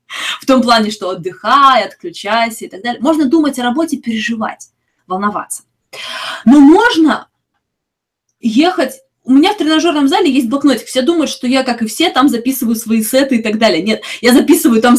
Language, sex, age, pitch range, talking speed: Russian, female, 20-39, 225-290 Hz, 170 wpm